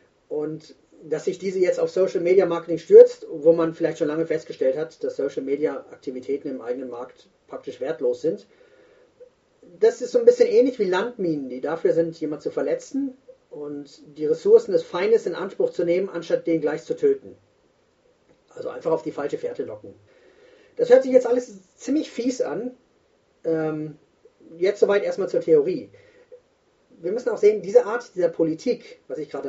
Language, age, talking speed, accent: English, 30-49, 175 wpm, German